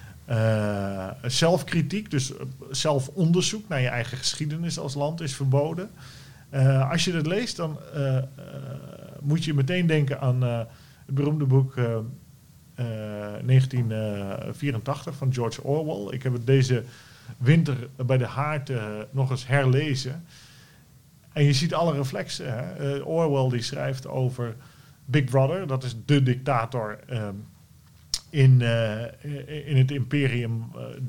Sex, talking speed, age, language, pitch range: male, 135 wpm, 40-59, Dutch, 120-145 Hz